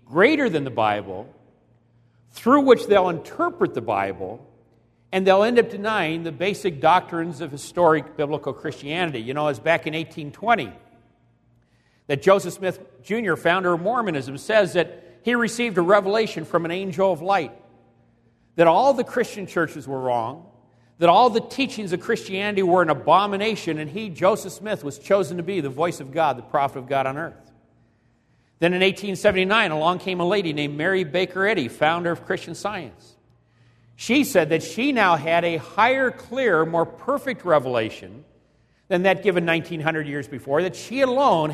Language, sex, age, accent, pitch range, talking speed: English, male, 50-69, American, 145-195 Hz, 170 wpm